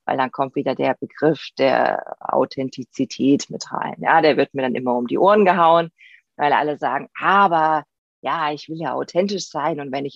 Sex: female